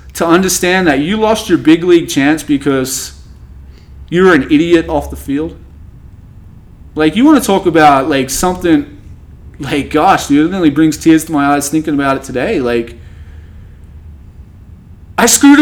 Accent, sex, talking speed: American, male, 160 wpm